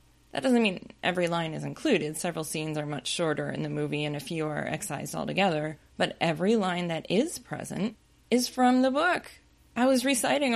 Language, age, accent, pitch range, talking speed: English, 20-39, American, 160-220 Hz, 195 wpm